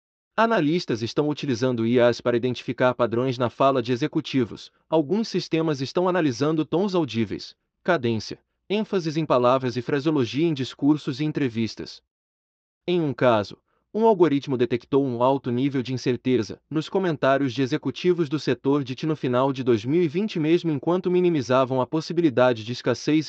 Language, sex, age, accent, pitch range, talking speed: Portuguese, male, 30-49, Brazilian, 125-160 Hz, 145 wpm